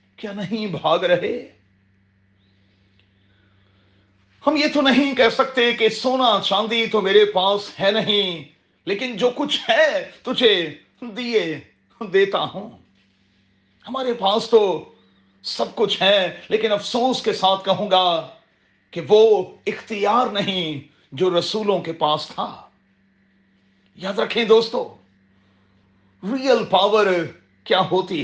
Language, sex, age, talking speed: Urdu, male, 40-59, 115 wpm